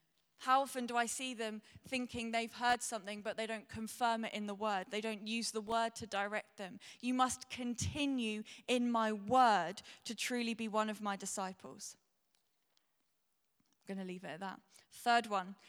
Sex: female